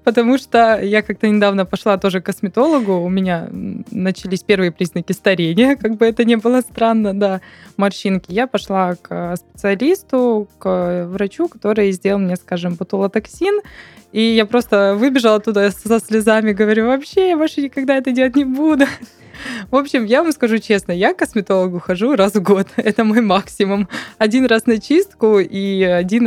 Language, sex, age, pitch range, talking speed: Russian, female, 20-39, 190-240 Hz, 165 wpm